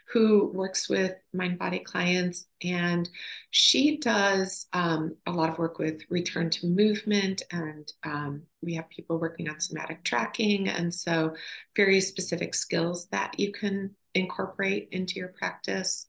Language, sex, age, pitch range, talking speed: English, female, 30-49, 160-190 Hz, 145 wpm